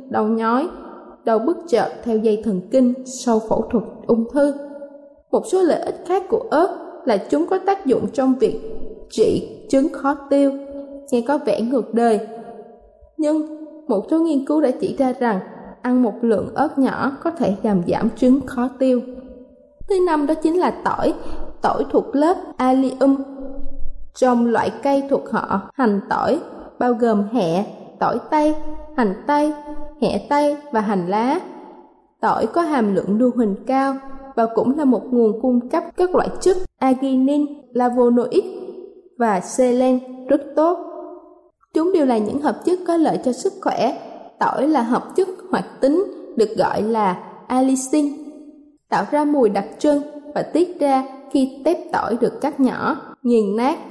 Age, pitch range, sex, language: 20-39, 240-300 Hz, female, Thai